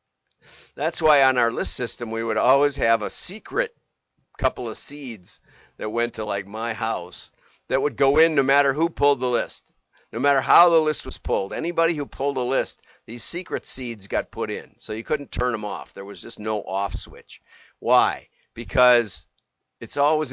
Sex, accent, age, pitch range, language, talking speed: male, American, 50-69, 105-145 Hz, English, 190 wpm